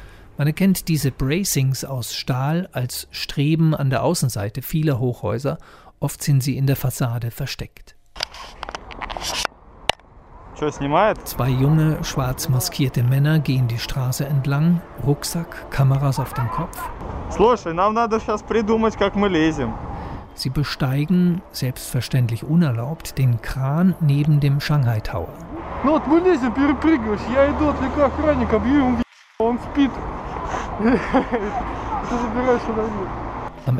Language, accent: German, German